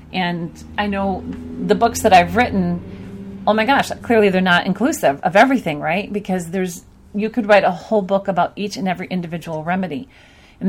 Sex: female